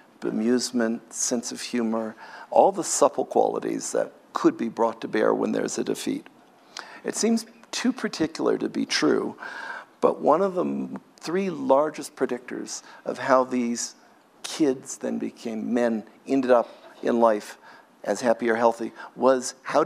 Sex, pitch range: male, 120-160 Hz